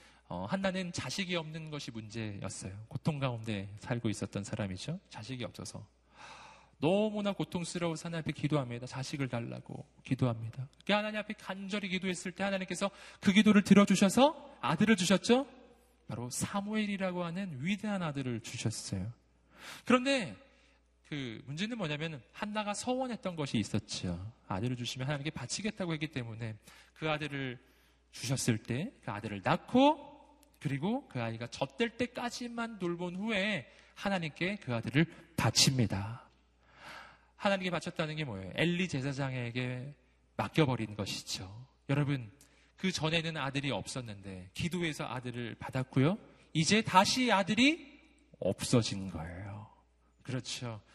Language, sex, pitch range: Korean, male, 120-195 Hz